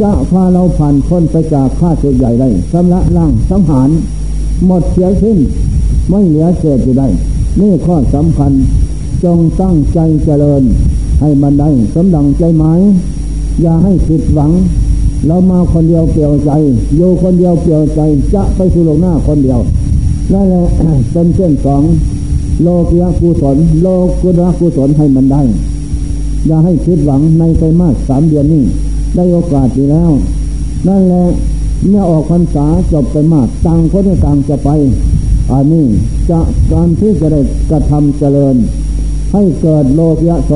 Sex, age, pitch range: male, 60-79, 140-175 Hz